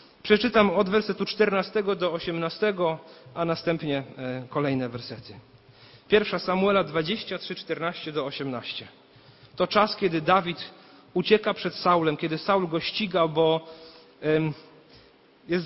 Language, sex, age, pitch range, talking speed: Polish, male, 40-59, 145-200 Hz, 120 wpm